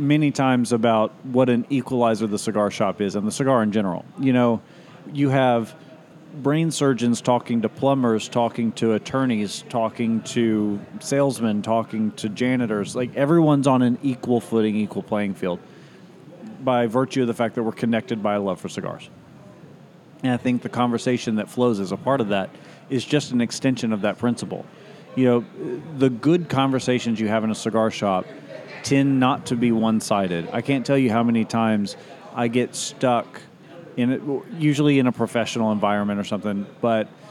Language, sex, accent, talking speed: English, male, American, 175 wpm